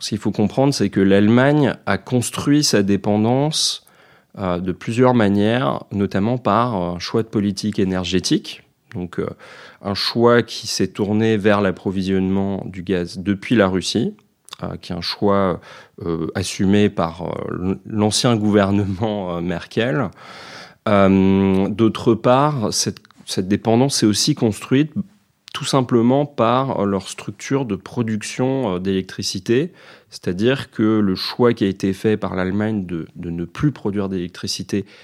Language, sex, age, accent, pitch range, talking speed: French, male, 30-49, French, 95-120 Hz, 140 wpm